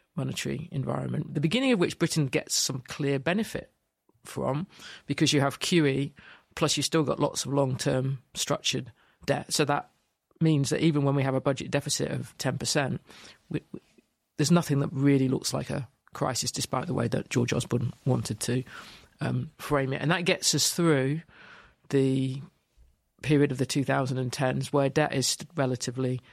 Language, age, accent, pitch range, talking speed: English, 40-59, British, 130-155 Hz, 160 wpm